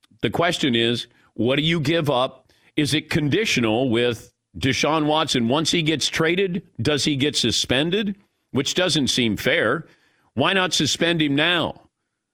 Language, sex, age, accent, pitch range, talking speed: English, male, 50-69, American, 120-160 Hz, 150 wpm